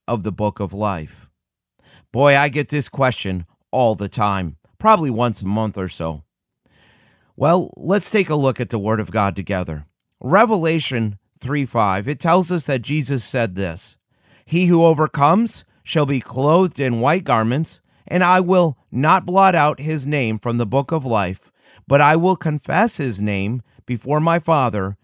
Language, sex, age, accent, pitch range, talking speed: English, male, 30-49, American, 110-155 Hz, 170 wpm